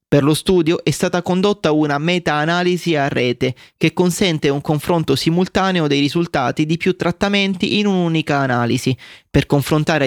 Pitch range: 145-180 Hz